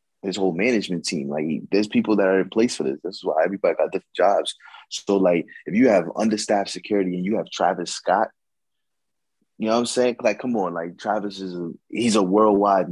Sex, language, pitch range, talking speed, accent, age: male, English, 90-115 Hz, 220 wpm, American, 20-39